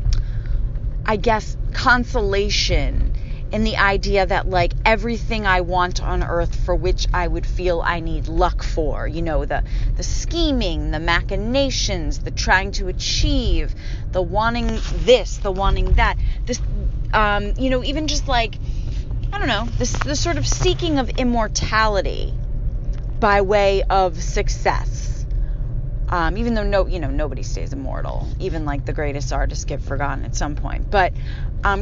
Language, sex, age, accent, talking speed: English, female, 30-49, American, 155 wpm